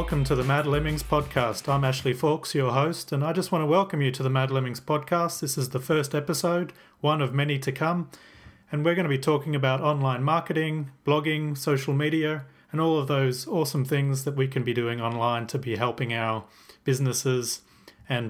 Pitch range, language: 130-160 Hz, English